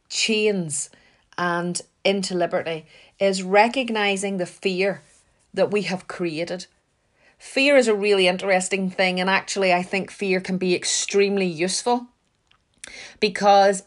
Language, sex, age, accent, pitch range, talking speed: English, female, 40-59, Irish, 180-220 Hz, 120 wpm